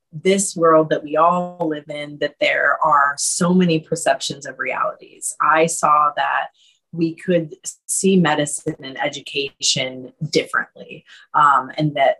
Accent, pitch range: American, 160-205 Hz